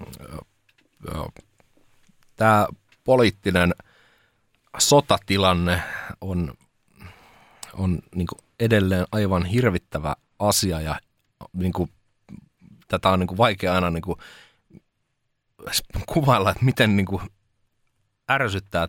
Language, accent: Finnish, native